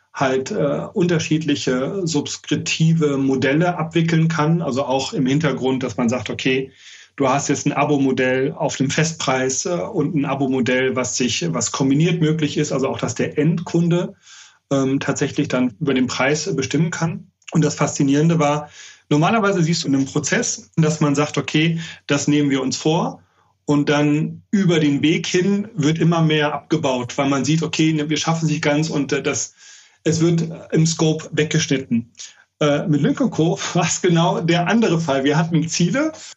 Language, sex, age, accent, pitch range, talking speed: German, male, 30-49, German, 135-165 Hz, 170 wpm